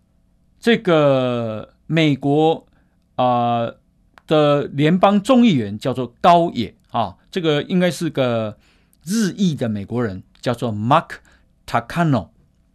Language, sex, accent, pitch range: Chinese, male, native, 110-170 Hz